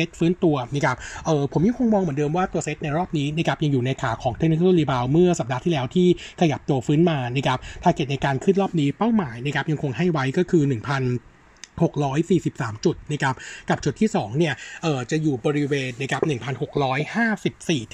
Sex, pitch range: male, 135-170 Hz